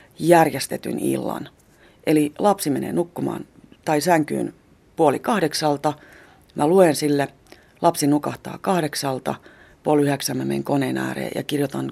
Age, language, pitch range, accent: 30-49, Finnish, 135-170 Hz, native